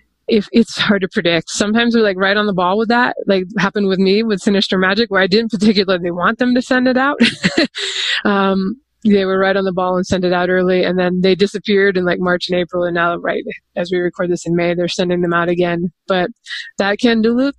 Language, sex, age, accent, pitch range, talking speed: English, female, 20-39, American, 175-205 Hz, 235 wpm